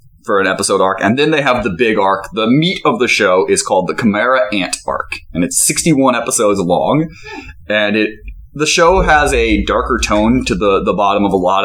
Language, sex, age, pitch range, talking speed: English, male, 20-39, 95-130 Hz, 215 wpm